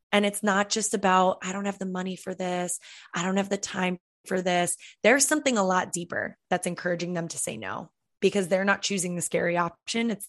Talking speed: 220 wpm